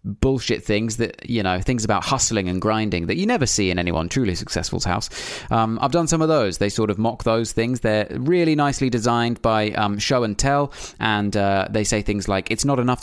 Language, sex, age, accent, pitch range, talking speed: English, male, 30-49, British, 95-120 Hz, 225 wpm